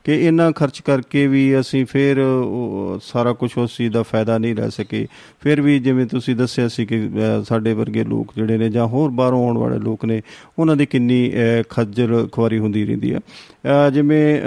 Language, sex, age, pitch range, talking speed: Punjabi, male, 40-59, 115-140 Hz, 180 wpm